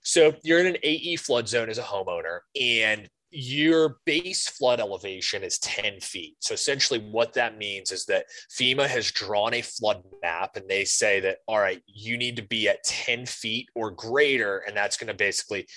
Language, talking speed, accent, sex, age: English, 200 wpm, American, male, 20-39